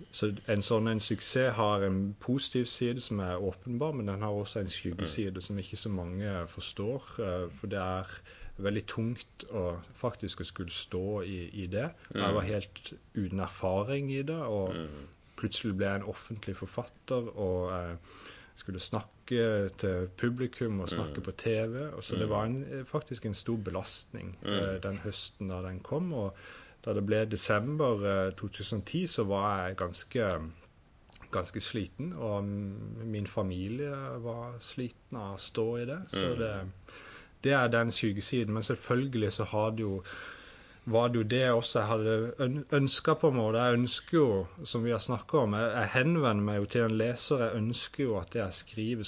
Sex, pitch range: male, 95-120 Hz